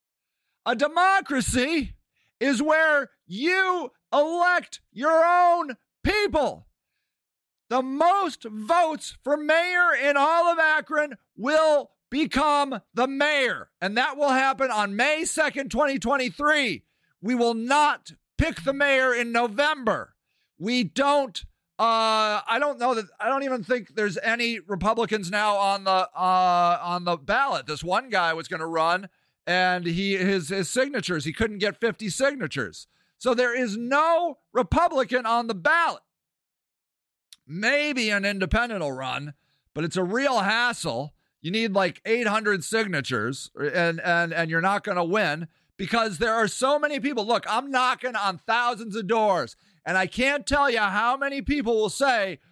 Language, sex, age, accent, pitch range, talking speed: English, male, 50-69, American, 190-285 Hz, 145 wpm